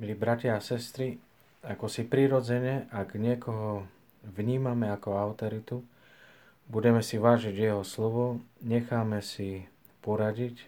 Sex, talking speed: male, 110 wpm